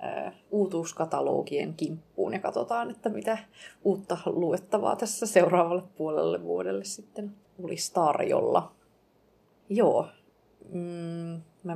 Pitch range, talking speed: 155-195 Hz, 85 wpm